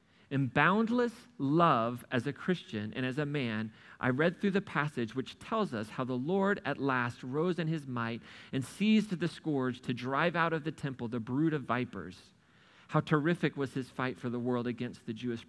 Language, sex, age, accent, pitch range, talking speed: English, male, 40-59, American, 120-150 Hz, 200 wpm